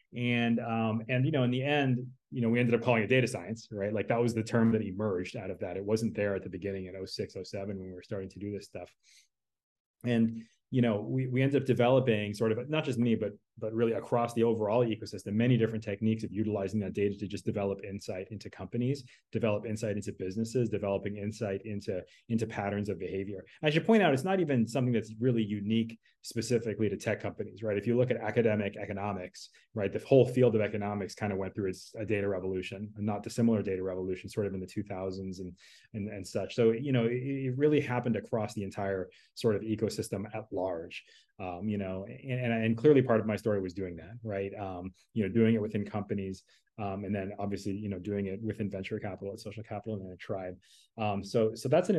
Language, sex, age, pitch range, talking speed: English, male, 30-49, 100-120 Hz, 230 wpm